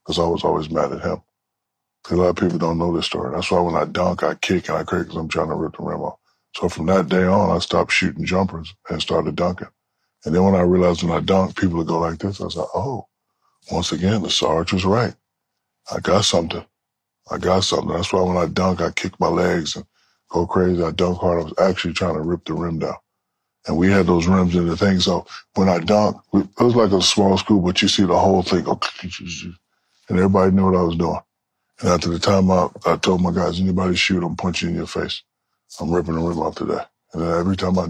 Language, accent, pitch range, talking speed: English, American, 85-100 Hz, 245 wpm